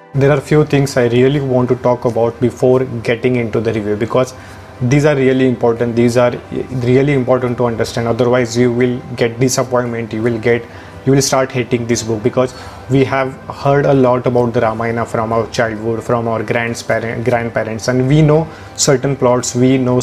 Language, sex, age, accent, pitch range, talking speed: English, male, 30-49, Indian, 115-130 Hz, 185 wpm